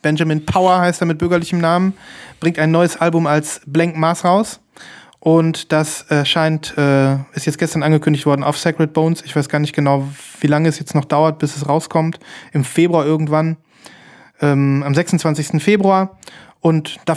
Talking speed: 180 wpm